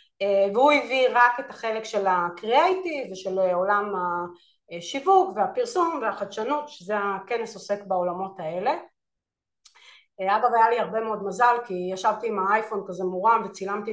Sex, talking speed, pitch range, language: female, 130 wpm, 195-250 Hz, Hebrew